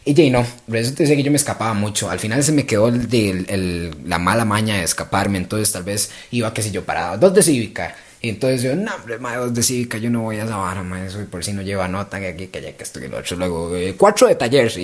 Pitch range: 95-135 Hz